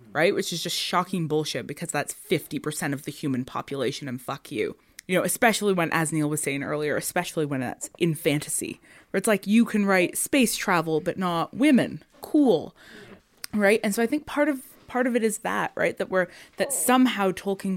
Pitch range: 155-195 Hz